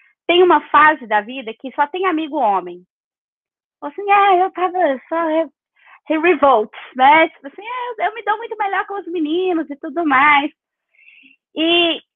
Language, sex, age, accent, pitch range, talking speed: Portuguese, female, 20-39, Brazilian, 220-325 Hz, 180 wpm